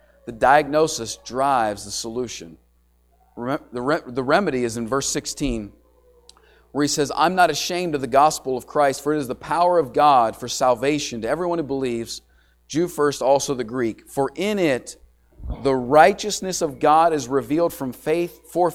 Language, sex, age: English, male, 40-59